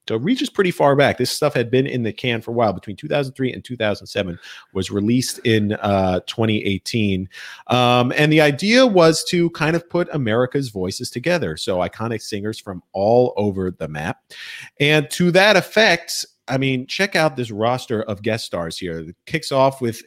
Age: 40-59